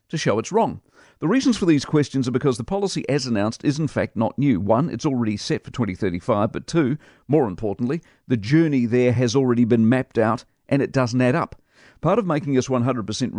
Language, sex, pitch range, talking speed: English, male, 110-145 Hz, 215 wpm